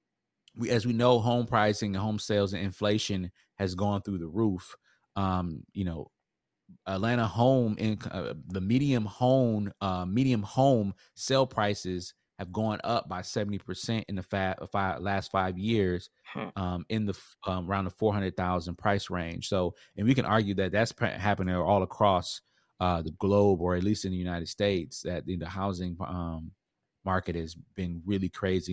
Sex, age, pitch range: male, 30-49, 90-110 Hz